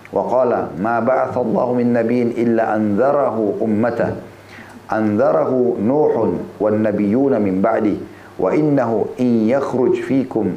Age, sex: 50-69, male